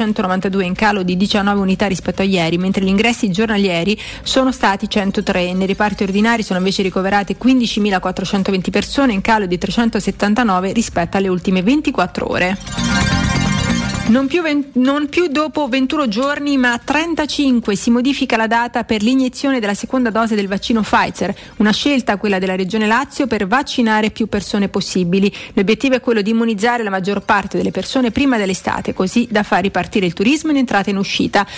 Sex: female